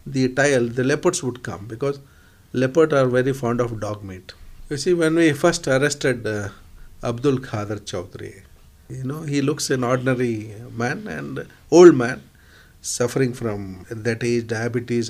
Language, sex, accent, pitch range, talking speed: Hindi, male, native, 110-130 Hz, 155 wpm